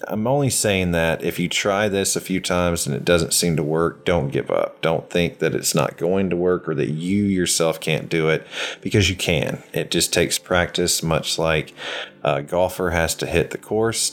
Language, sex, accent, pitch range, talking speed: English, male, American, 80-100 Hz, 215 wpm